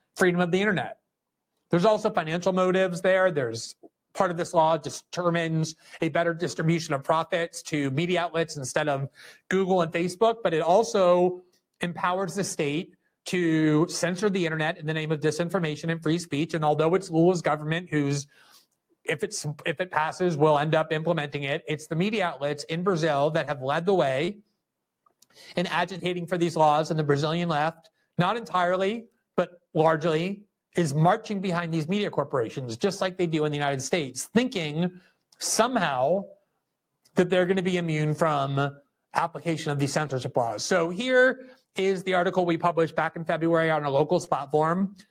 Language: English